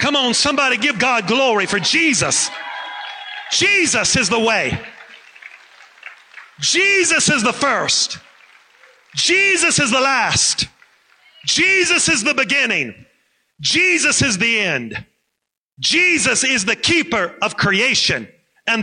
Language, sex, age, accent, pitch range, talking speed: English, male, 40-59, American, 210-315 Hz, 110 wpm